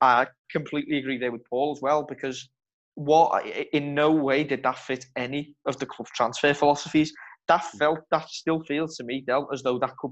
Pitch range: 125-145 Hz